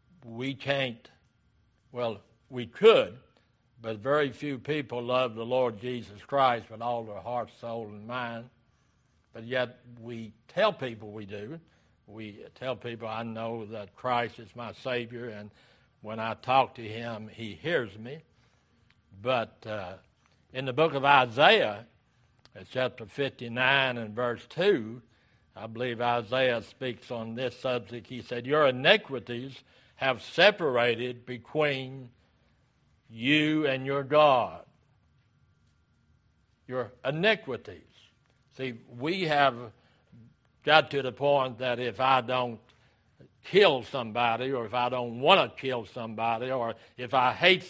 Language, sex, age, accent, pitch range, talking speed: English, male, 60-79, American, 115-135 Hz, 130 wpm